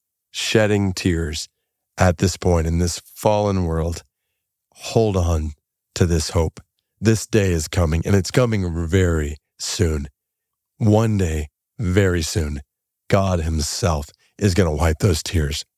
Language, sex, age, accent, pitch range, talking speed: English, male, 40-59, American, 85-115 Hz, 135 wpm